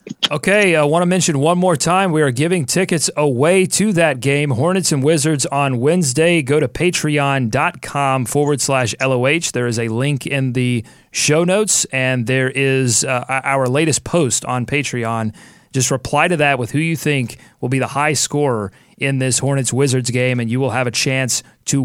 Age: 30-49